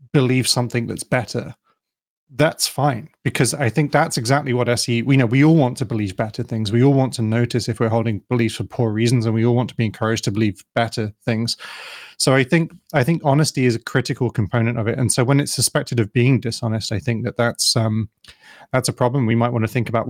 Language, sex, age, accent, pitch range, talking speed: English, male, 30-49, British, 115-140 Hz, 235 wpm